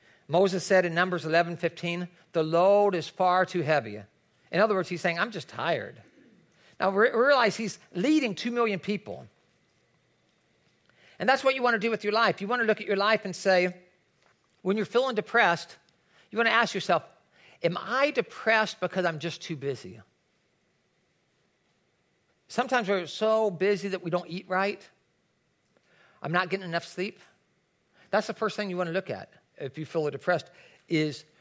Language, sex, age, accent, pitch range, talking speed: English, male, 50-69, American, 160-205 Hz, 175 wpm